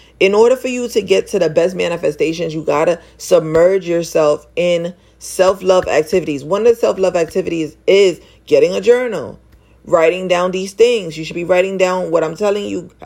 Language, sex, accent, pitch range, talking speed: English, female, American, 170-205 Hz, 185 wpm